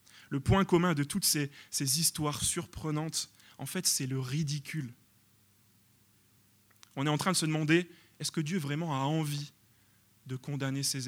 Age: 20-39